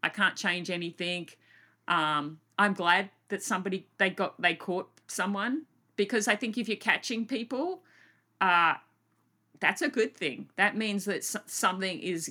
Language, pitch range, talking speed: English, 175-210 Hz, 150 wpm